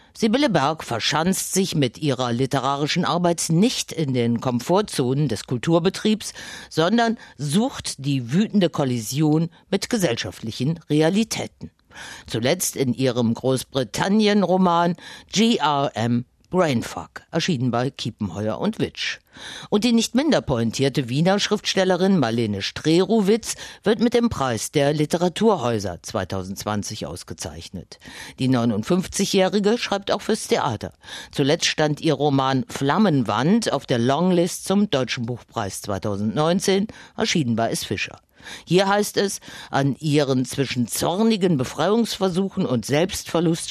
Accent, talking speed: German, 115 wpm